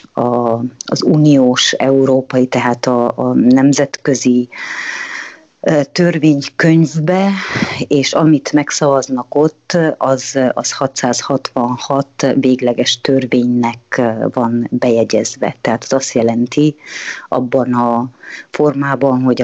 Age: 30-49